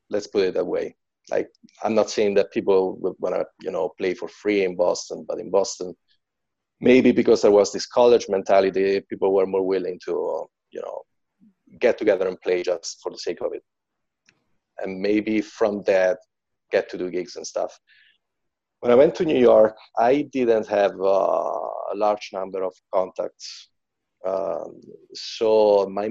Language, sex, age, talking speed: English, male, 30-49, 175 wpm